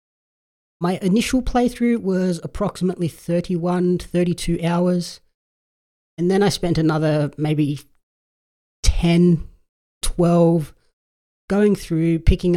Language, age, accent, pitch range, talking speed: English, 30-49, Australian, 145-185 Hz, 95 wpm